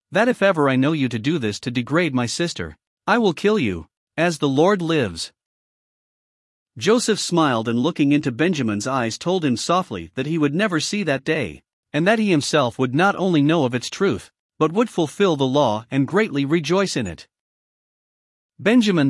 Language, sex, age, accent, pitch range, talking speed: English, male, 50-69, American, 130-185 Hz, 190 wpm